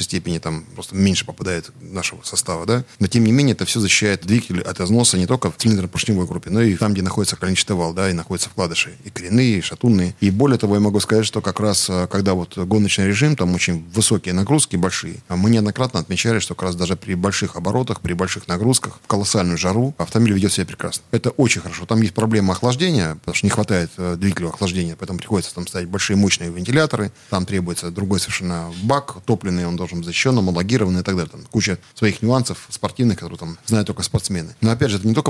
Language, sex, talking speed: Russian, male, 215 wpm